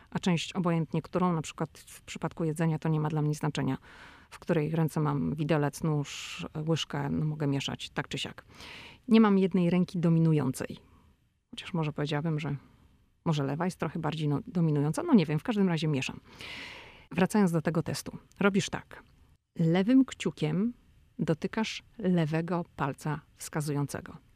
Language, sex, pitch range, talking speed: Polish, female, 155-190 Hz, 150 wpm